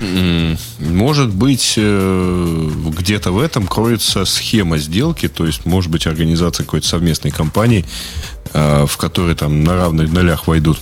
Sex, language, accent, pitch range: male, Russian, native, 80-100 Hz